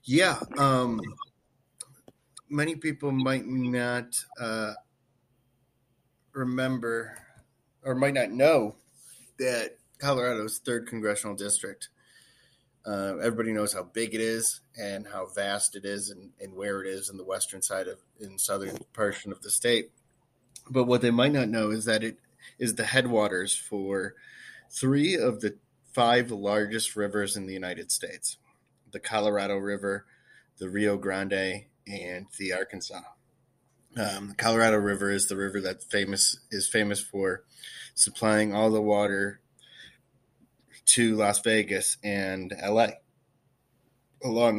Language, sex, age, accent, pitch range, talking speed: English, male, 30-49, American, 100-125 Hz, 135 wpm